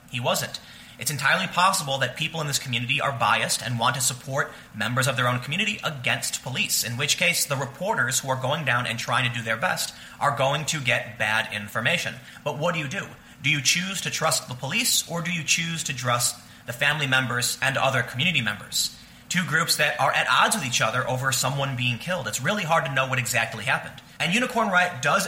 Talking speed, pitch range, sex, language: 225 wpm, 120-160 Hz, male, English